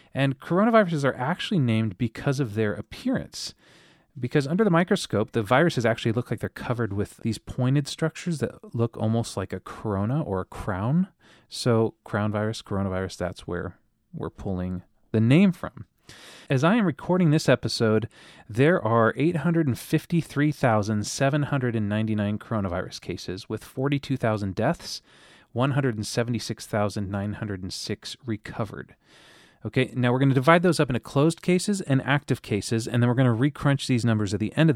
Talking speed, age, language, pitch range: 150 wpm, 30-49, English, 105-140 Hz